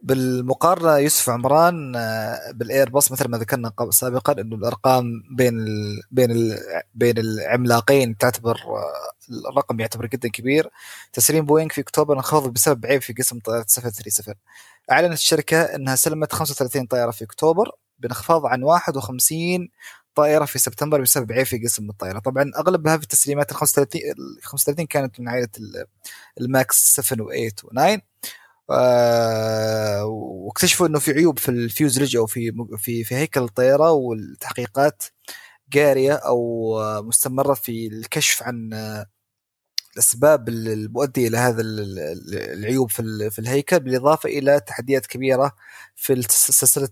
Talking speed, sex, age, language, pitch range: 120 wpm, male, 20-39, Arabic, 115-145 Hz